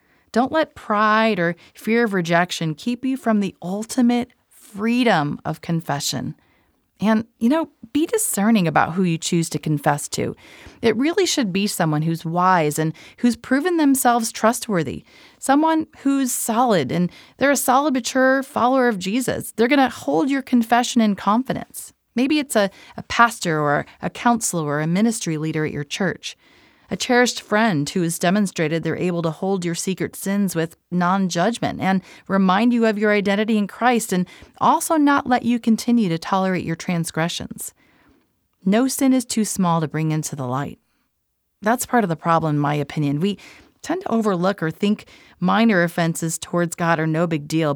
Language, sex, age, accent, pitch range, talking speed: English, female, 30-49, American, 165-235 Hz, 175 wpm